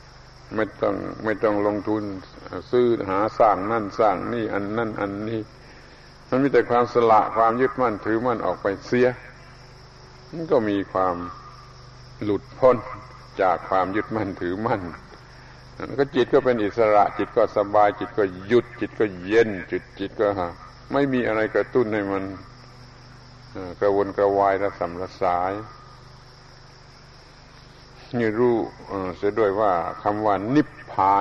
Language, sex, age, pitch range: Thai, male, 70-89, 100-125 Hz